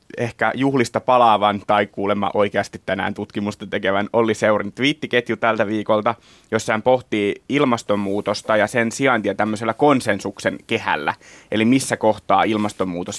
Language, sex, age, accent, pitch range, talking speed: Finnish, male, 20-39, native, 105-125 Hz, 125 wpm